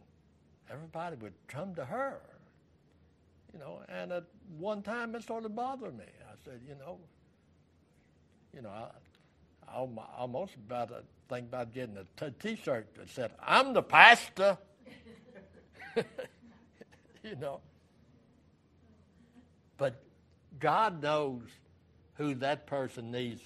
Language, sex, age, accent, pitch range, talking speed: English, male, 60-79, American, 80-140 Hz, 120 wpm